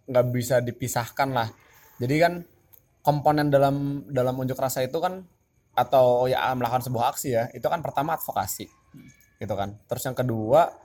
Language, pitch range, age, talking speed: Indonesian, 115-140 Hz, 20-39, 155 wpm